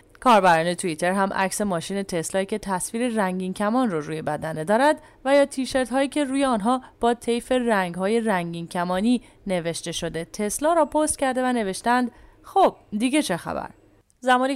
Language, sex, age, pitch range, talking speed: English, female, 30-49, 180-235 Hz, 165 wpm